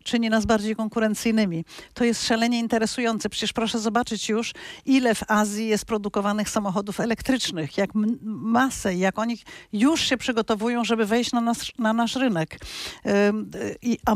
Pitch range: 195-240 Hz